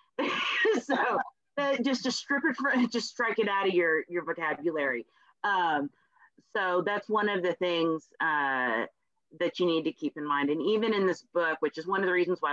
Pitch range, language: 165-260 Hz, English